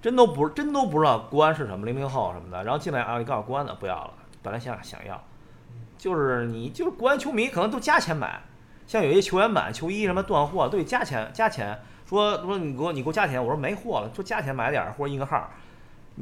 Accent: native